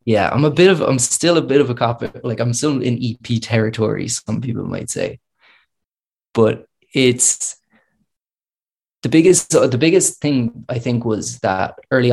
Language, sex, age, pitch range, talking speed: English, male, 20-39, 110-125 Hz, 175 wpm